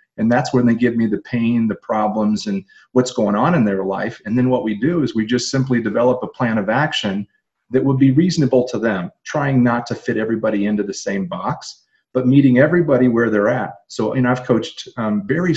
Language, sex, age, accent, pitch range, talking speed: English, male, 40-59, American, 110-145 Hz, 225 wpm